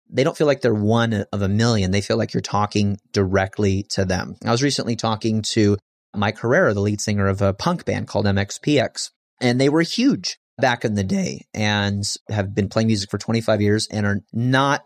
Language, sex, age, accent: English, male, 30-49, American